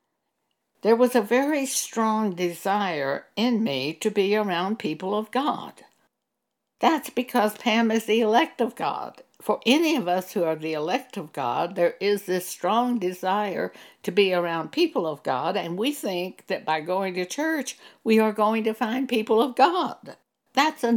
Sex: female